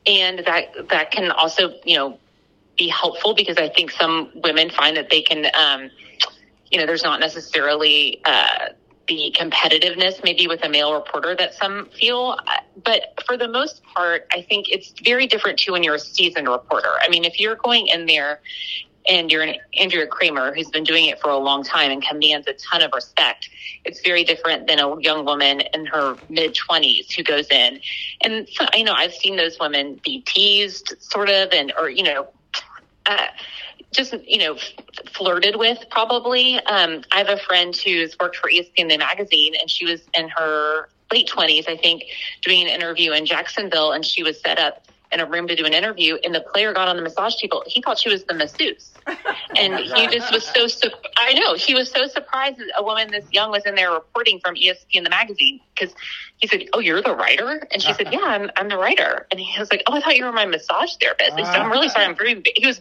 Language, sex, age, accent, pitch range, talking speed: English, female, 30-49, American, 160-225 Hz, 215 wpm